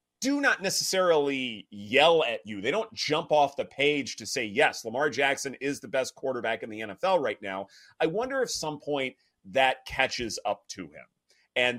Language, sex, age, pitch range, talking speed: English, male, 30-49, 120-165 Hz, 190 wpm